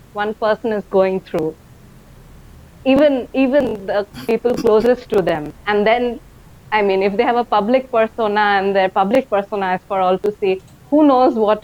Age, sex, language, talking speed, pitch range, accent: 20-39, female, English, 175 wpm, 195-245 Hz, Indian